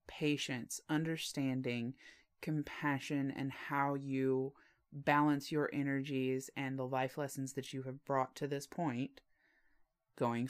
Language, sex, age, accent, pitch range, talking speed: English, female, 30-49, American, 135-165 Hz, 120 wpm